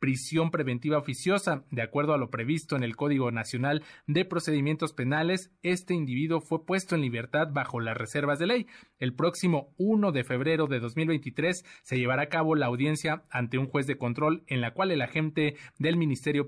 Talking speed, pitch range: 185 wpm, 125-155 Hz